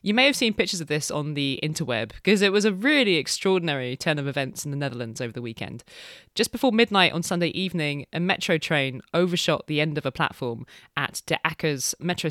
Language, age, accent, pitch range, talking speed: English, 20-39, British, 145-205 Hz, 215 wpm